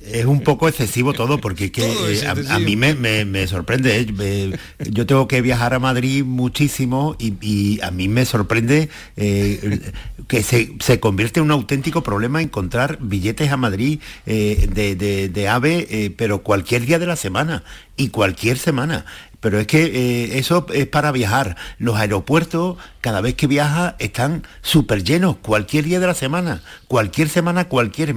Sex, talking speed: male, 170 wpm